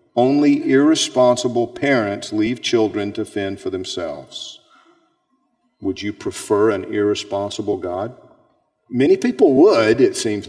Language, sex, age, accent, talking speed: English, male, 50-69, American, 115 wpm